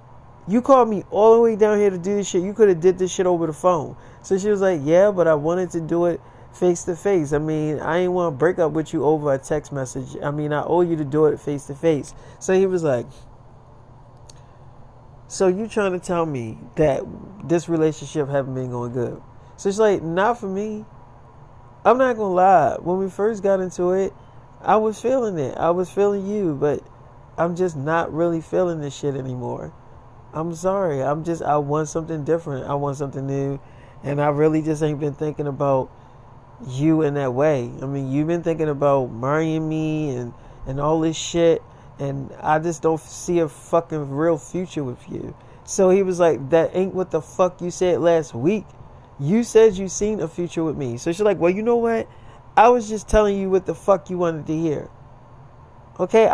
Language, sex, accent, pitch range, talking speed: English, male, American, 140-185 Hz, 215 wpm